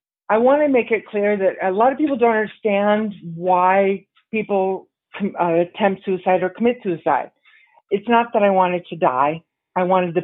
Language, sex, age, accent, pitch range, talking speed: English, female, 40-59, American, 170-205 Hz, 180 wpm